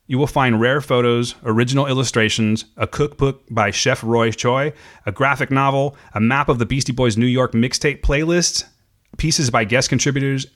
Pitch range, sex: 110-135 Hz, male